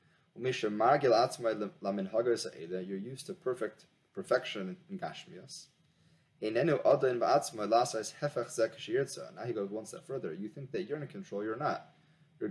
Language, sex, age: English, male, 30-49